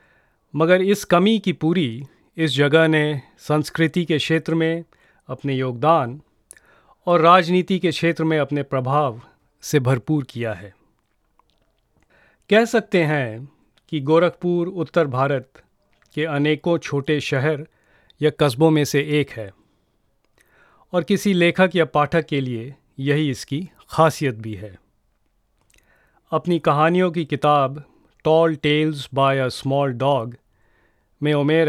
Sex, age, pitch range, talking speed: male, 30-49, 130-160 Hz, 125 wpm